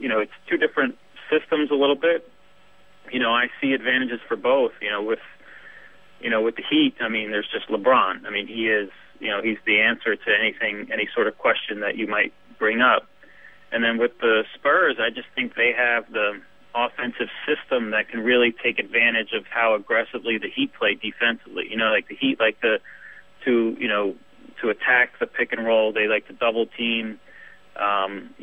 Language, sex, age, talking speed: English, male, 30-49, 205 wpm